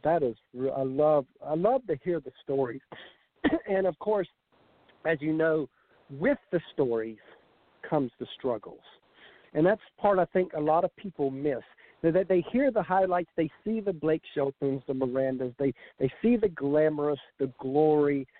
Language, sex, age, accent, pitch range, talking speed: English, male, 50-69, American, 140-185 Hz, 170 wpm